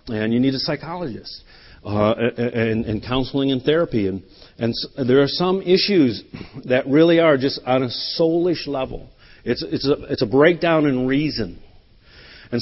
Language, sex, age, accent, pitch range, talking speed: English, male, 50-69, American, 115-145 Hz, 160 wpm